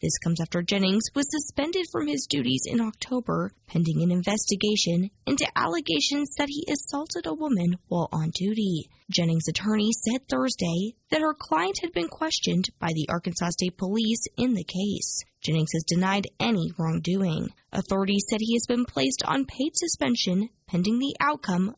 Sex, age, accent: female, 10-29, American